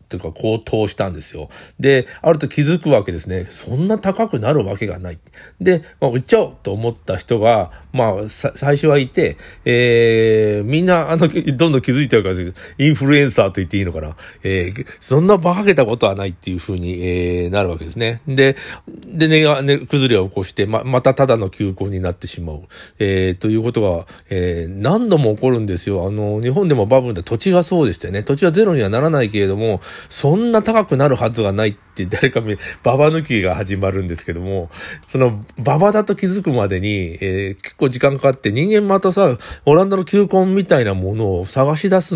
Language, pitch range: Japanese, 95-145 Hz